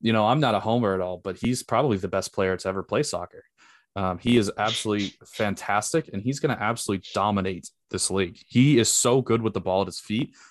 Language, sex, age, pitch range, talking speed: English, male, 20-39, 100-125 Hz, 235 wpm